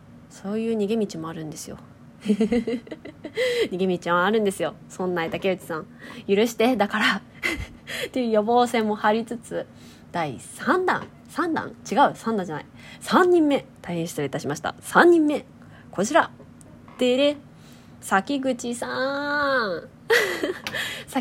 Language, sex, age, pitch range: Japanese, female, 20-39, 185-285 Hz